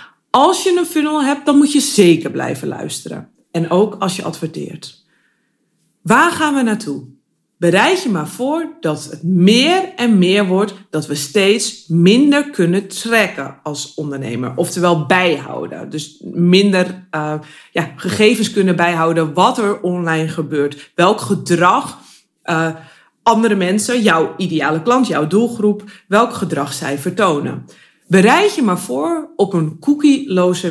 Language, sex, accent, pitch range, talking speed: Dutch, female, Dutch, 160-230 Hz, 140 wpm